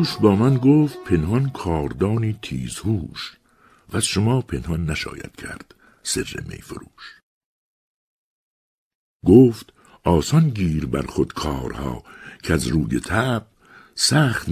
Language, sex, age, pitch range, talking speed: Persian, male, 60-79, 70-115 Hz, 110 wpm